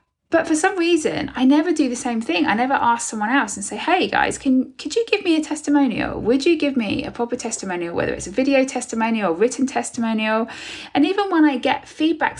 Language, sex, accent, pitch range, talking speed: English, female, British, 225-305 Hz, 230 wpm